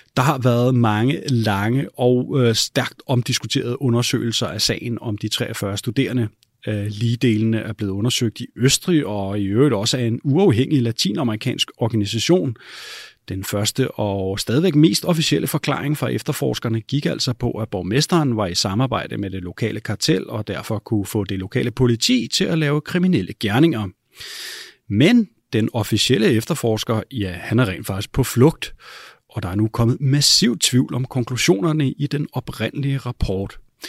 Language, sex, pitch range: Danish, male, 110-145 Hz